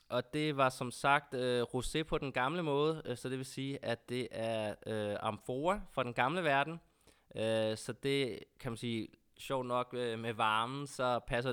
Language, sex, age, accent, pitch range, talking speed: Danish, male, 20-39, native, 110-135 Hz, 200 wpm